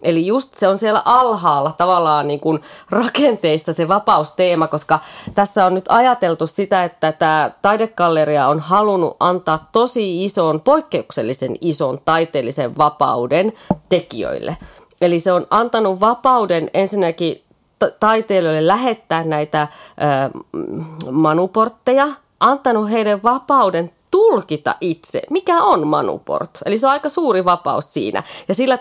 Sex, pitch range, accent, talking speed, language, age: female, 160-220 Hz, native, 120 wpm, Finnish, 30-49